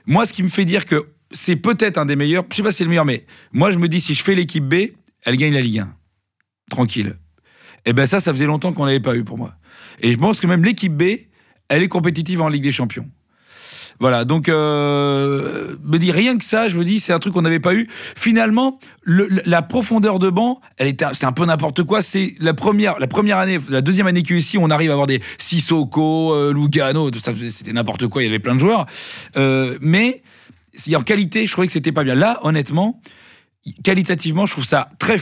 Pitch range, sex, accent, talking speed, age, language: 130-185 Hz, male, French, 240 wpm, 40-59, French